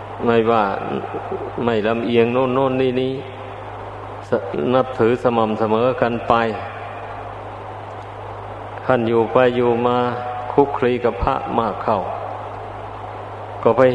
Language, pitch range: Thai, 105-115 Hz